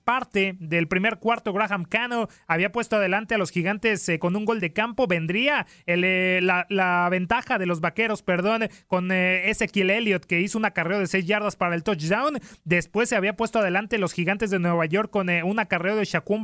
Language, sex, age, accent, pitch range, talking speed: Spanish, male, 30-49, Mexican, 180-220 Hz, 210 wpm